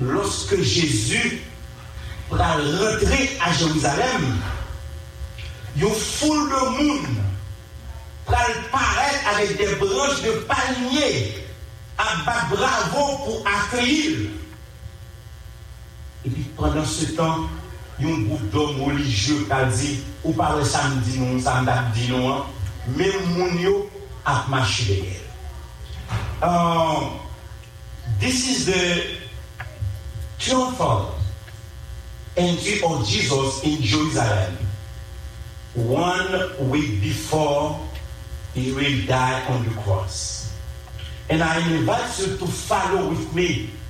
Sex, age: male, 50-69